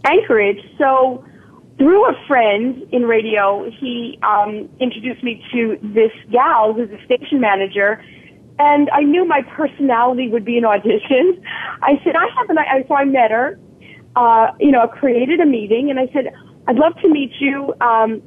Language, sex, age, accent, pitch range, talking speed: English, female, 40-59, American, 220-290 Hz, 170 wpm